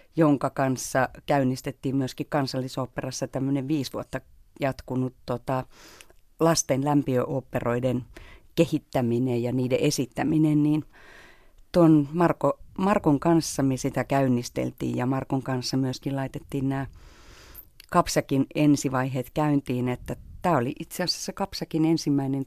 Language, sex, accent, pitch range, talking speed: Finnish, female, native, 130-150 Hz, 100 wpm